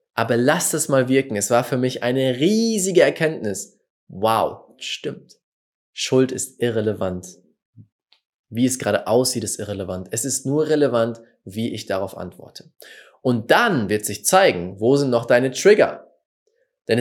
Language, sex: German, male